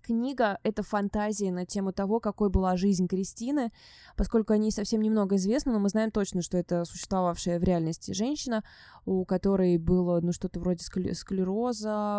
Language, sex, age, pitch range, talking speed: Russian, female, 20-39, 180-210 Hz, 165 wpm